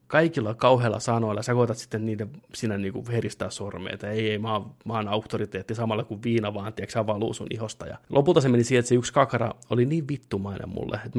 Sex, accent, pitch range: male, native, 110-140 Hz